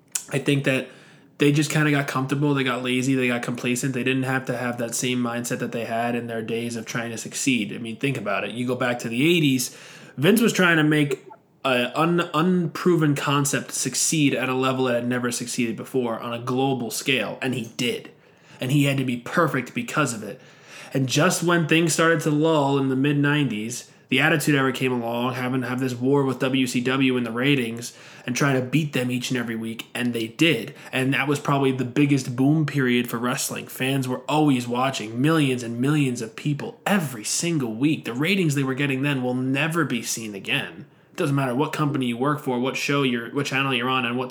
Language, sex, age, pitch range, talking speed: English, male, 20-39, 125-145 Hz, 220 wpm